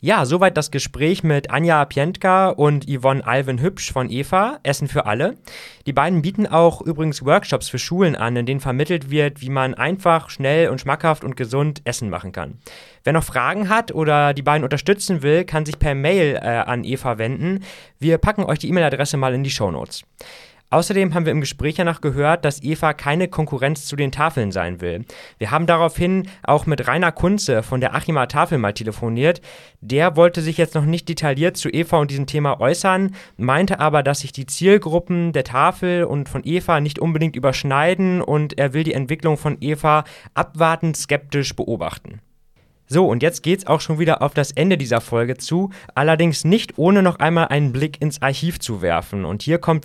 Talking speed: 190 wpm